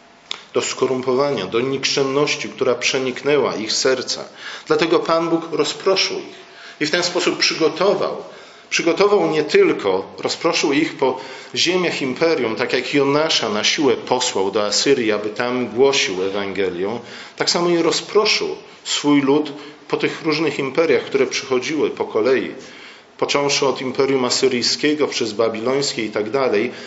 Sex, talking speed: male, 135 wpm